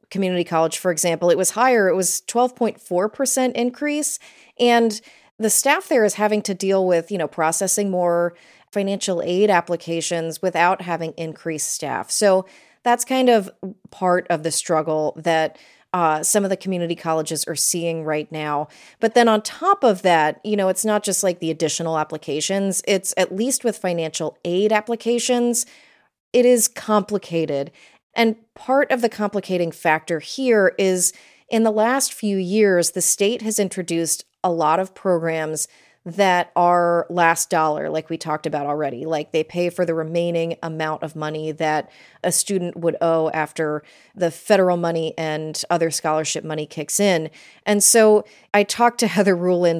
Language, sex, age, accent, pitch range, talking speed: English, female, 30-49, American, 160-210 Hz, 165 wpm